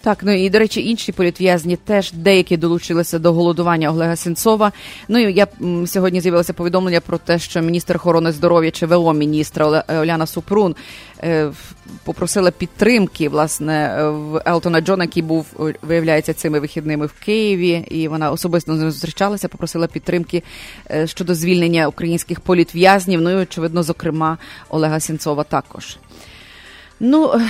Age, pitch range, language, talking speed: 30-49, 160-195 Hz, English, 135 wpm